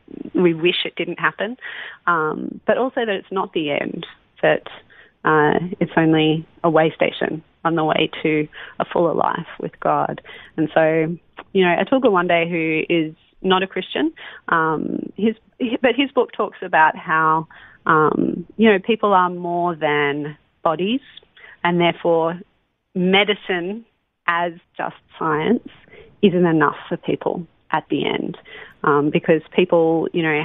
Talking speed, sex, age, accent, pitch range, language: 150 wpm, female, 30-49, Australian, 160-190 Hz, English